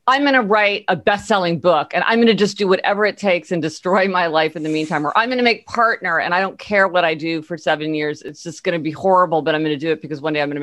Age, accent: 40-59, American